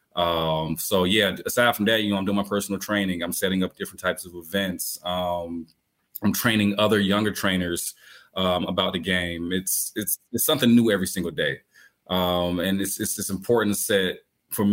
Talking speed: 190 wpm